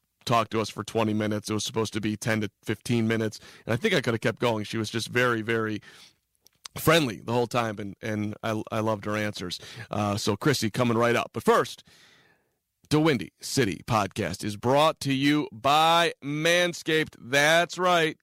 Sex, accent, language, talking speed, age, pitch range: male, American, English, 195 wpm, 40-59, 115-145 Hz